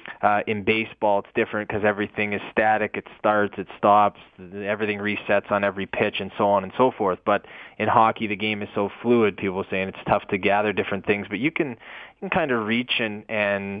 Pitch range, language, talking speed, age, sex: 100-110 Hz, English, 220 wpm, 20-39, male